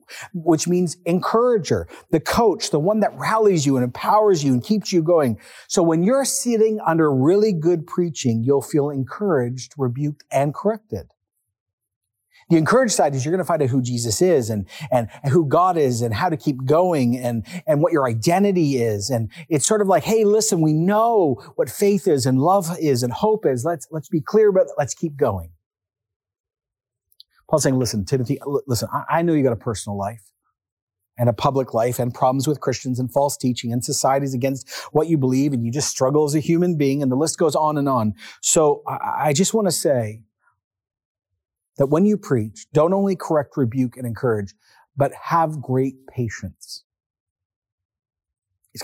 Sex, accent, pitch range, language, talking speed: male, American, 120-175 Hz, English, 185 wpm